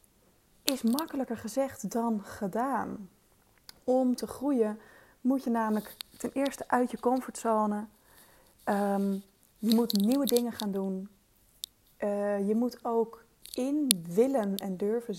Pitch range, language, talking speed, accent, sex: 205-250 Hz, Dutch, 120 wpm, Dutch, female